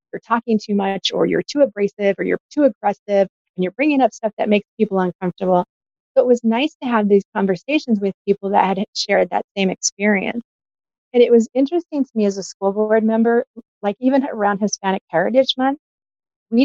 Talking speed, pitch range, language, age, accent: 200 wpm, 195-240 Hz, English, 40-59, American